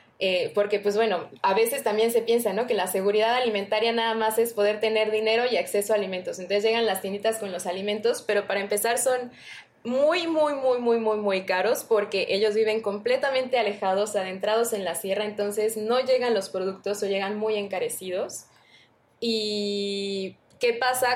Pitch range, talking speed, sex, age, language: 200-230 Hz, 180 wpm, female, 20-39, Spanish